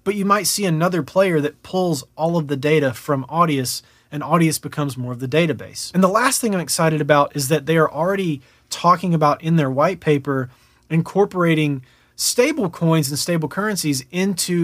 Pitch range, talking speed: 140-170 Hz, 190 wpm